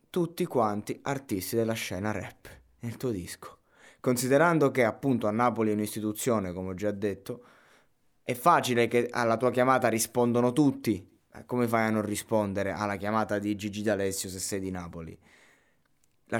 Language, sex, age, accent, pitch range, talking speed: Italian, male, 20-39, native, 95-120 Hz, 155 wpm